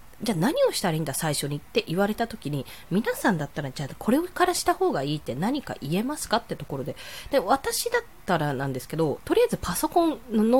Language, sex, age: Japanese, female, 20-39